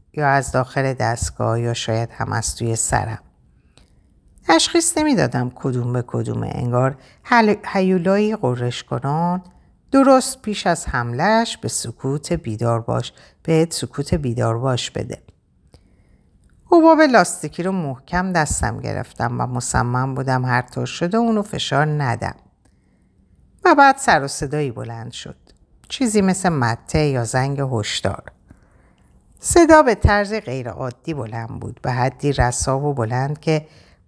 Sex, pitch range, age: female, 120-180 Hz, 50-69